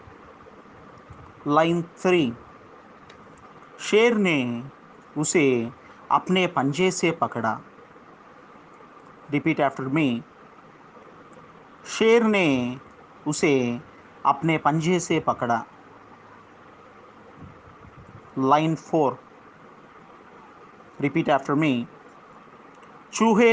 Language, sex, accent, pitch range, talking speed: Telugu, male, native, 135-180 Hz, 65 wpm